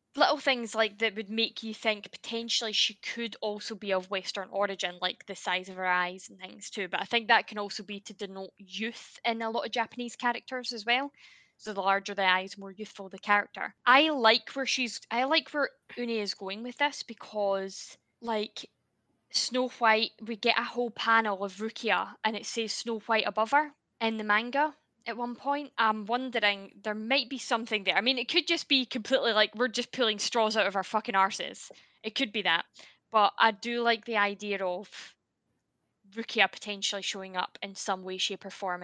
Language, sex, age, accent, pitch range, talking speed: English, female, 10-29, British, 205-245 Hz, 205 wpm